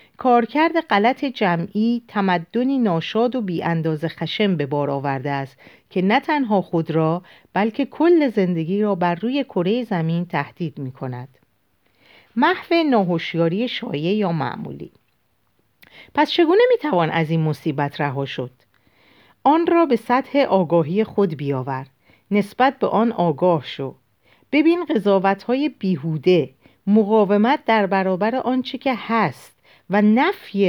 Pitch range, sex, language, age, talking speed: 160-235 Hz, female, Persian, 40-59, 125 wpm